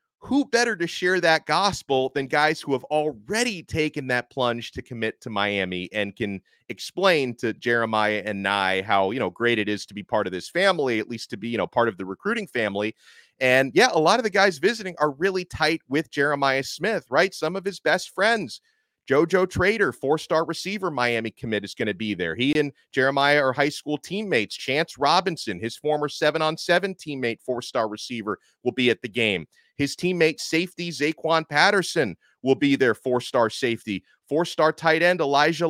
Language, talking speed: English, 190 wpm